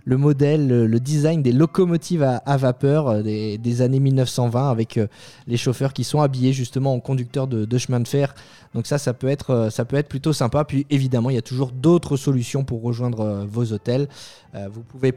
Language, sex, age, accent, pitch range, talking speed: French, male, 20-39, French, 125-155 Hz, 200 wpm